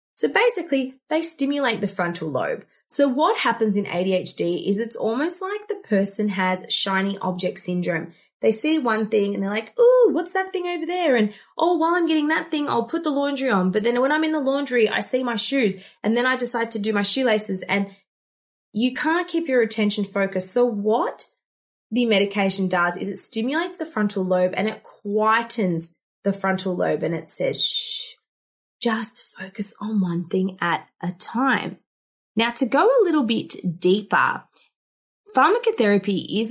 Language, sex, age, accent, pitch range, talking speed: English, female, 20-39, Australian, 185-280 Hz, 180 wpm